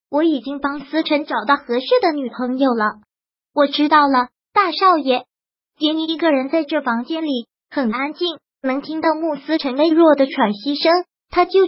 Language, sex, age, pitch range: Chinese, male, 20-39, 265-330 Hz